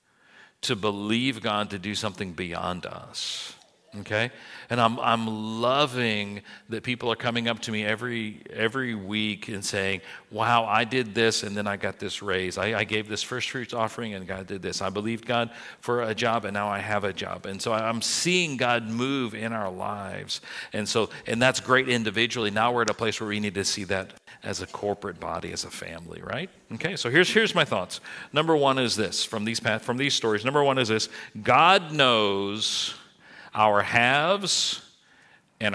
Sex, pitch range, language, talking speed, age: male, 105-135 Hz, English, 195 wpm, 50-69